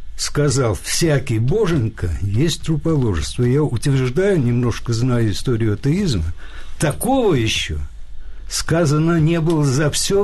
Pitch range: 105-150 Hz